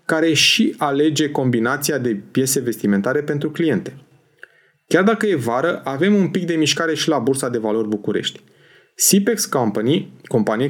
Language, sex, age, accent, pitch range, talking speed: Romanian, male, 30-49, native, 125-180 Hz, 150 wpm